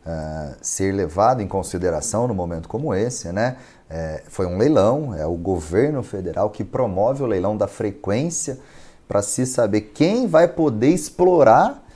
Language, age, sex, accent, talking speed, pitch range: Portuguese, 30-49, male, Brazilian, 155 wpm, 95-160 Hz